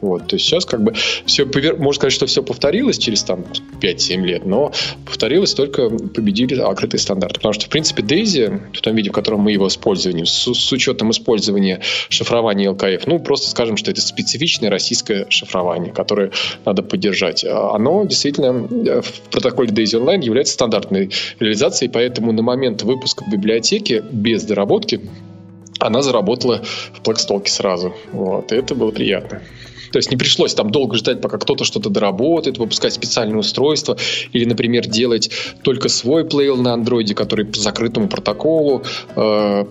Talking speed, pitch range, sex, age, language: 160 wpm, 100-125 Hz, male, 20-39, Russian